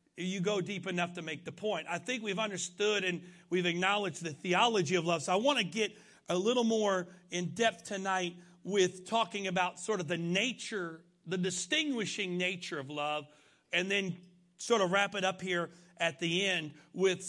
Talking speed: 185 wpm